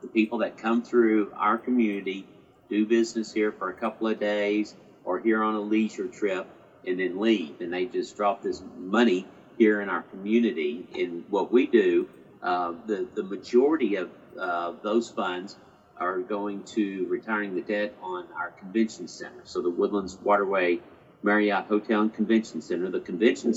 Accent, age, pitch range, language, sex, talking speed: American, 50-69, 105-120 Hz, English, male, 170 wpm